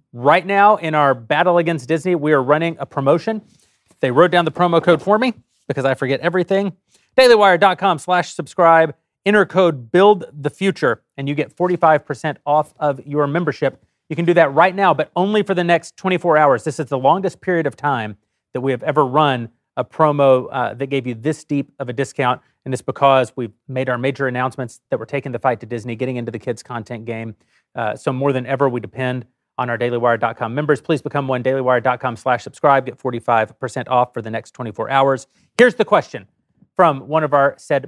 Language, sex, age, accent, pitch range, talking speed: English, male, 30-49, American, 125-170 Hz, 205 wpm